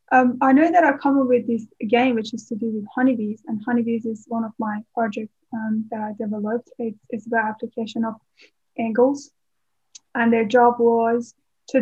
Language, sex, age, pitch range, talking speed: English, female, 10-29, 230-260 Hz, 195 wpm